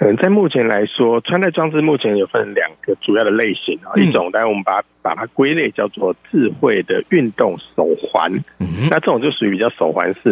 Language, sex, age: Chinese, male, 50-69